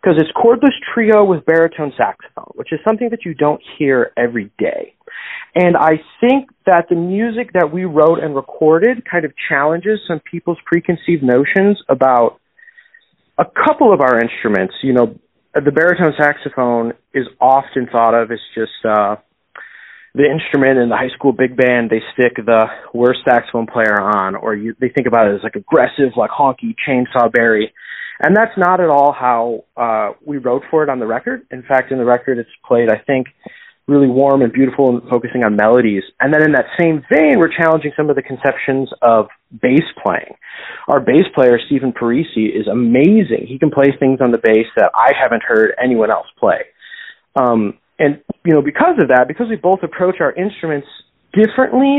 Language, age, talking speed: English, 30-49, 185 wpm